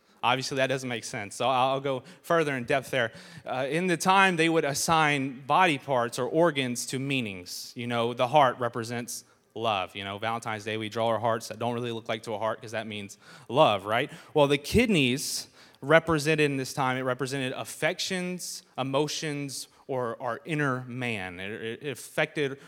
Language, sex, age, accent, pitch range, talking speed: English, male, 30-49, American, 120-155 Hz, 185 wpm